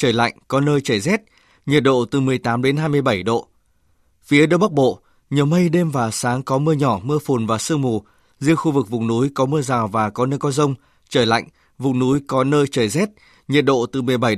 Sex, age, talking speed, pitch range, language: male, 20-39, 230 wpm, 130-155 Hz, Vietnamese